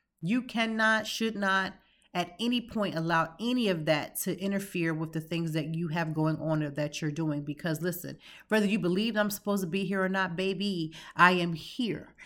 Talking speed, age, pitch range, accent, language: 200 wpm, 30-49, 160-190 Hz, American, English